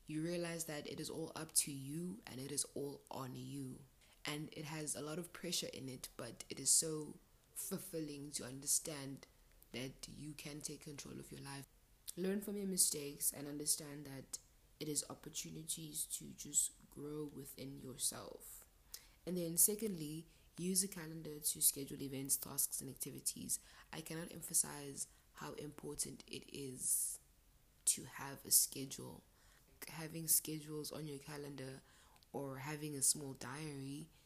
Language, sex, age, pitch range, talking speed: English, female, 20-39, 140-160 Hz, 150 wpm